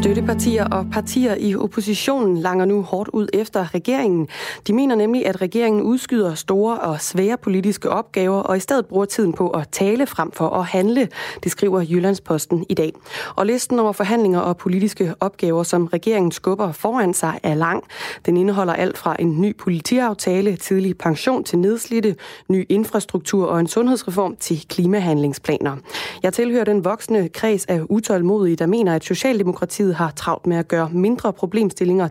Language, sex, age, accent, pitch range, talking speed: Danish, female, 20-39, native, 170-210 Hz, 165 wpm